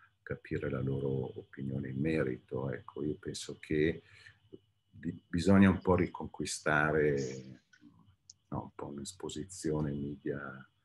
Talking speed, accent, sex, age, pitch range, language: 115 wpm, native, male, 50-69, 70-95 Hz, Italian